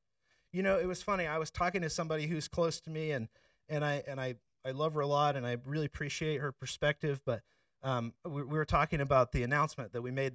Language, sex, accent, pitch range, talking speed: English, male, American, 130-175 Hz, 245 wpm